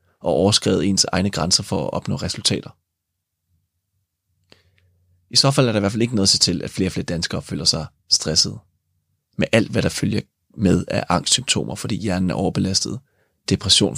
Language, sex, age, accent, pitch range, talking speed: Danish, male, 30-49, native, 90-105 Hz, 180 wpm